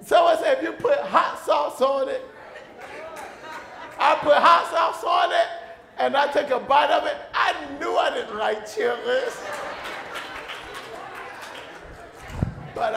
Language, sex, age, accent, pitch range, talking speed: English, male, 40-59, American, 210-290 Hz, 135 wpm